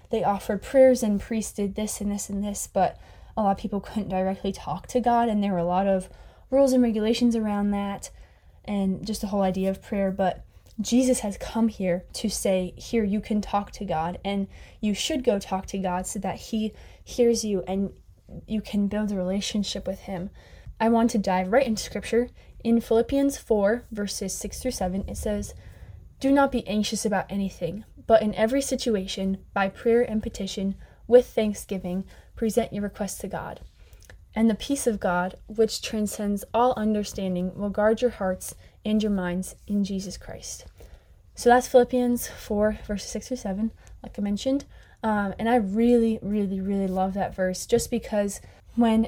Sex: female